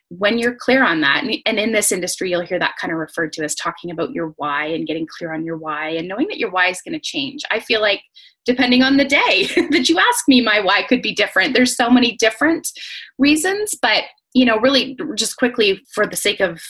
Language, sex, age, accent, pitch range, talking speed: English, female, 20-39, American, 175-245 Hz, 240 wpm